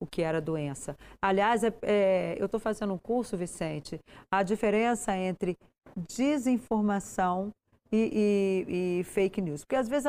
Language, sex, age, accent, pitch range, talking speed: Portuguese, female, 40-59, Brazilian, 185-230 Hz, 150 wpm